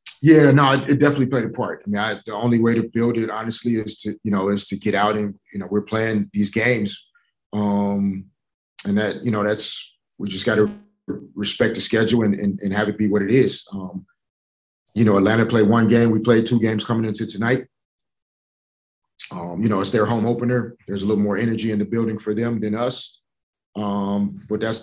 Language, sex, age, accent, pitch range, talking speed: English, male, 30-49, American, 100-115 Hz, 220 wpm